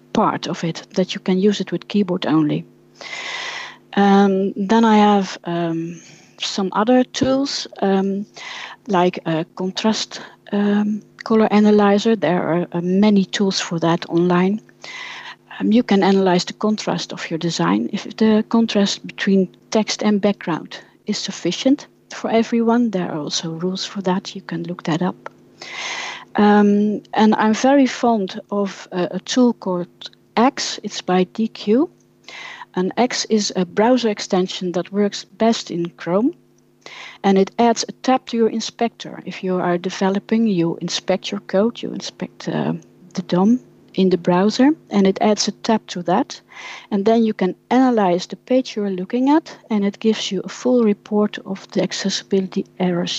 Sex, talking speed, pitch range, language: female, 160 wpm, 185-225 Hz, English